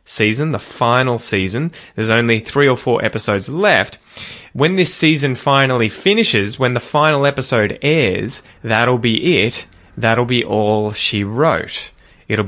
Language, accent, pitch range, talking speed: English, Australian, 105-135 Hz, 145 wpm